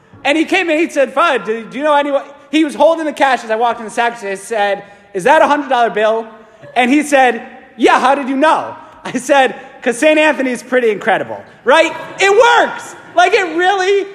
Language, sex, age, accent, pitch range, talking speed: English, male, 30-49, American, 235-330 Hz, 215 wpm